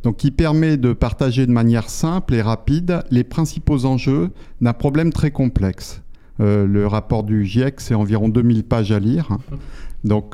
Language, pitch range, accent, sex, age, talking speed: French, 105-135 Hz, French, male, 50-69, 170 wpm